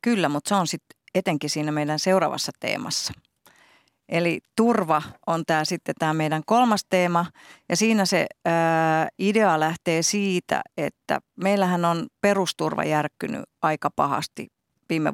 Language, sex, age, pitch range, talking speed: Finnish, female, 40-59, 155-185 Hz, 135 wpm